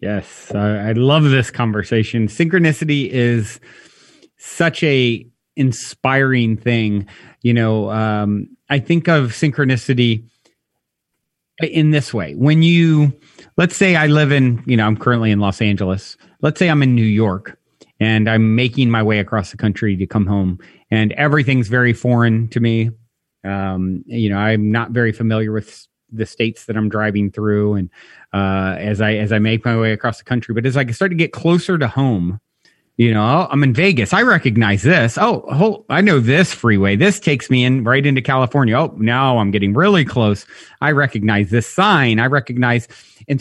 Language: English